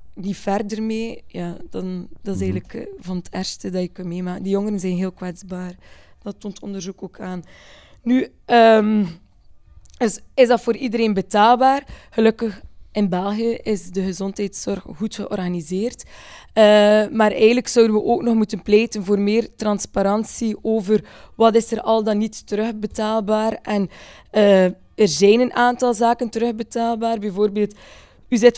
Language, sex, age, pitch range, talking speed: Dutch, female, 20-39, 200-230 Hz, 155 wpm